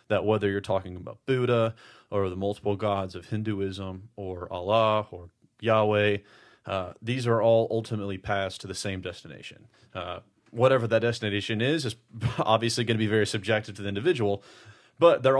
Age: 30-49